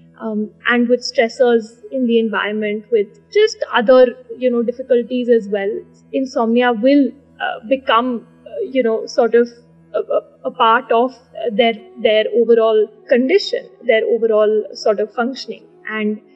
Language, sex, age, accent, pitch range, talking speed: Hindi, female, 30-49, native, 220-270 Hz, 140 wpm